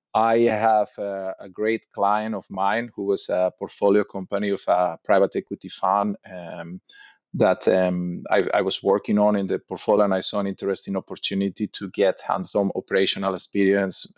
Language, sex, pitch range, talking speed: English, male, 95-110 Hz, 170 wpm